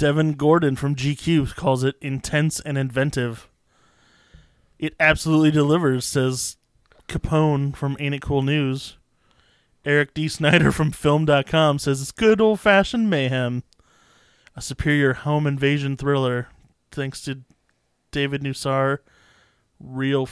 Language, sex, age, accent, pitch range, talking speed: English, male, 20-39, American, 125-145 Hz, 115 wpm